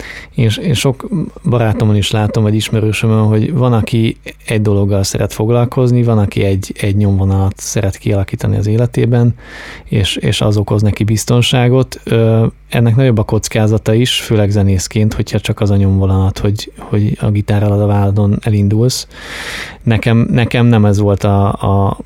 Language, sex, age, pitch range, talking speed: Hungarian, male, 20-39, 100-115 Hz, 155 wpm